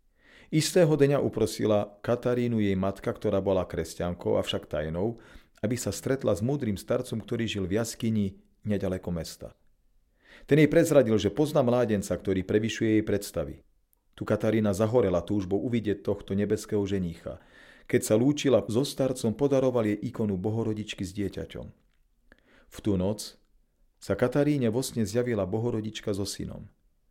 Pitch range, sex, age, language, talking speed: 100-125 Hz, male, 40-59, Slovak, 135 wpm